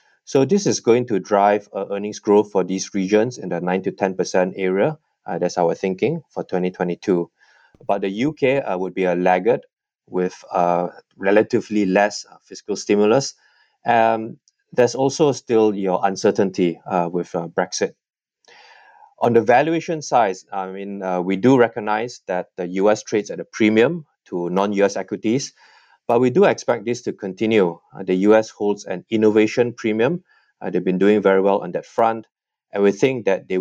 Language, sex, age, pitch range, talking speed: English, male, 20-39, 95-115 Hz, 170 wpm